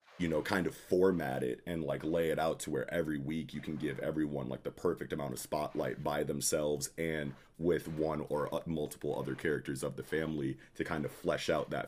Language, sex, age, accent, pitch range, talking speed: English, male, 30-49, American, 70-80 Hz, 215 wpm